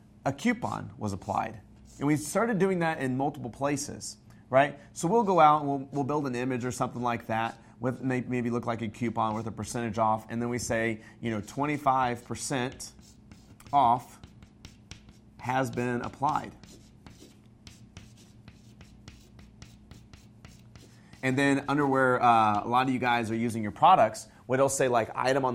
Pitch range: 110-135 Hz